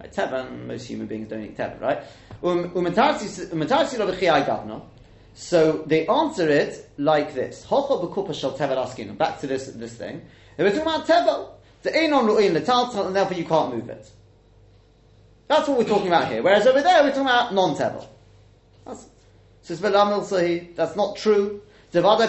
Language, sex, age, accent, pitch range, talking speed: English, male, 30-49, British, 130-205 Hz, 130 wpm